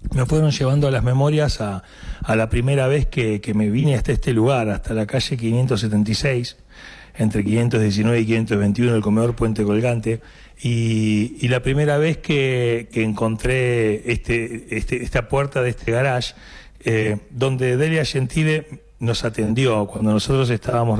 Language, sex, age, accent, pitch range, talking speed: Spanish, male, 40-59, Argentinian, 110-135 Hz, 150 wpm